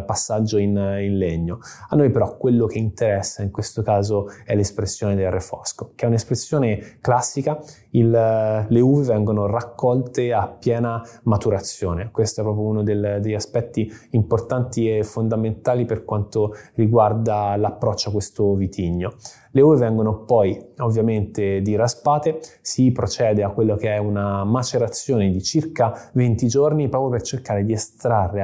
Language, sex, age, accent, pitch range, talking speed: Italian, male, 20-39, native, 105-125 Hz, 145 wpm